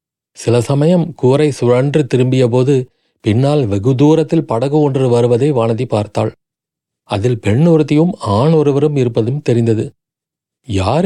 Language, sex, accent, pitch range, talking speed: Tamil, male, native, 115-150 Hz, 115 wpm